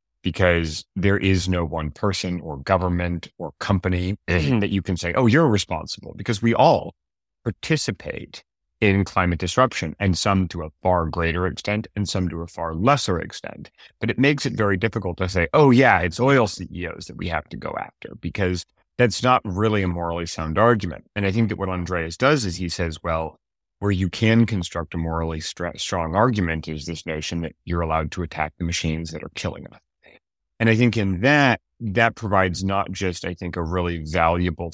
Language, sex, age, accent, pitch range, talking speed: English, male, 30-49, American, 80-100 Hz, 195 wpm